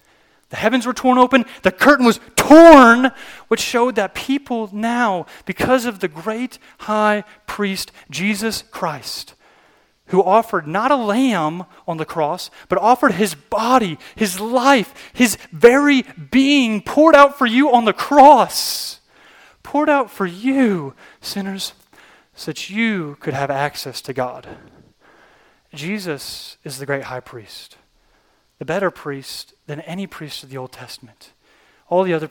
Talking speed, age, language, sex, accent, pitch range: 145 wpm, 30-49, English, male, American, 145-225 Hz